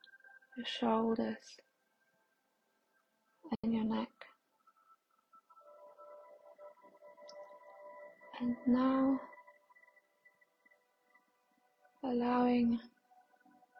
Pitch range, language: 225-295 Hz, English